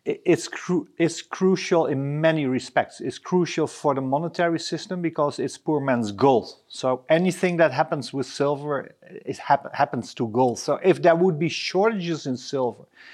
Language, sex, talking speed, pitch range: English, male, 170 wpm, 135-170 Hz